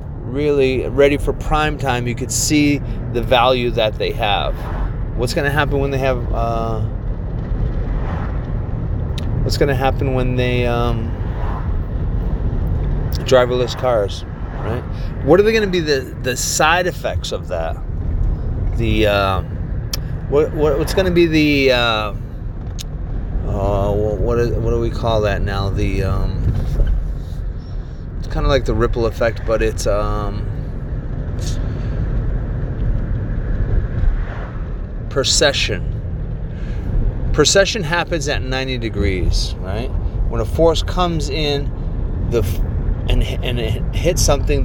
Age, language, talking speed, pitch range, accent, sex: 30-49, English, 120 wpm, 95-130 Hz, American, male